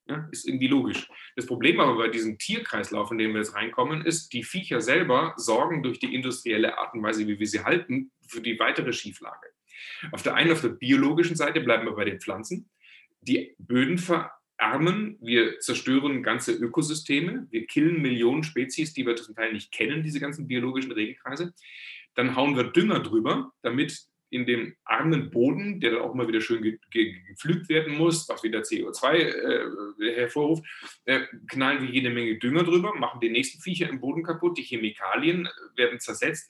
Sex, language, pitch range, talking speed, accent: male, German, 120-175 Hz, 180 wpm, German